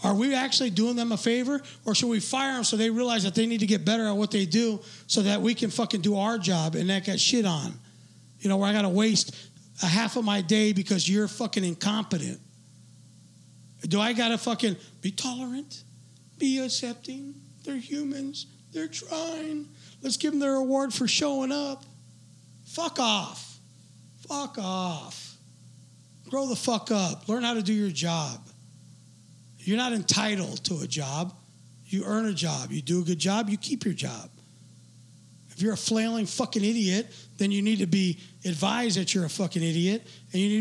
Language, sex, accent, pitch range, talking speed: English, male, American, 180-230 Hz, 190 wpm